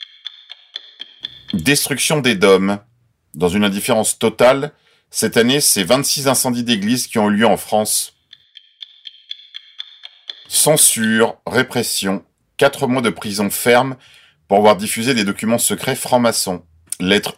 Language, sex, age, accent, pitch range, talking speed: French, male, 40-59, French, 100-140 Hz, 115 wpm